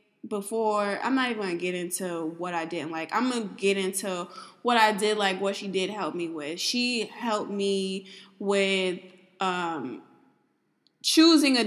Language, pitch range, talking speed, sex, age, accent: English, 185-225 Hz, 165 wpm, female, 20-39, American